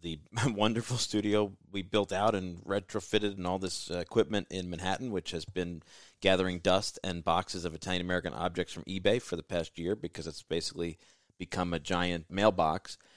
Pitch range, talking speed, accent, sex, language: 85-105 Hz, 175 wpm, American, male, English